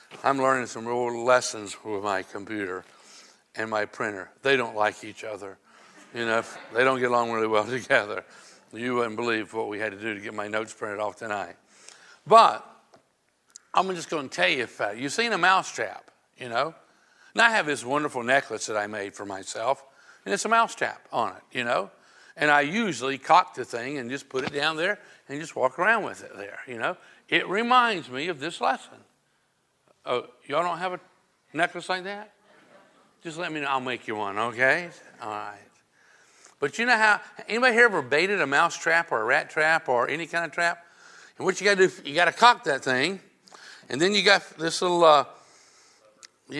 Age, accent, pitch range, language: 60-79, American, 125-185 Hz, English